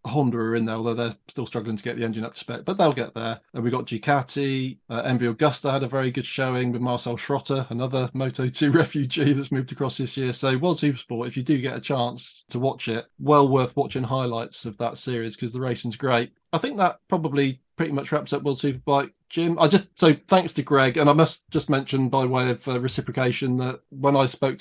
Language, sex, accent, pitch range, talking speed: English, male, British, 120-140 Hz, 240 wpm